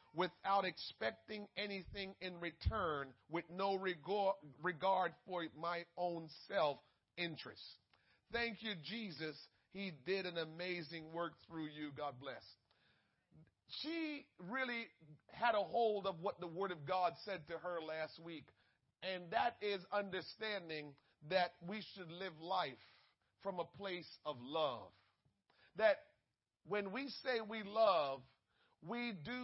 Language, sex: English, male